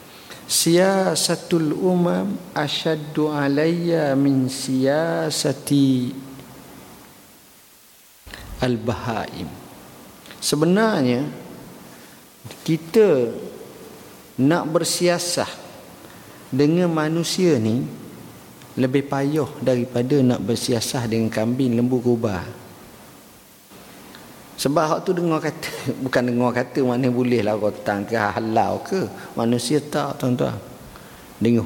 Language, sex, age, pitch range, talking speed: Malay, male, 50-69, 115-140 Hz, 80 wpm